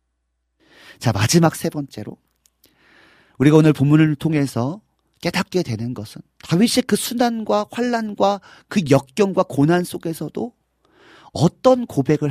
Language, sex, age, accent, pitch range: Korean, male, 40-59, native, 110-175 Hz